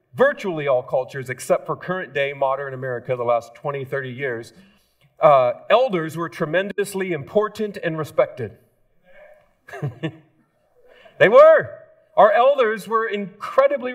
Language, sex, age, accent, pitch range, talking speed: English, male, 40-59, American, 140-200 Hz, 115 wpm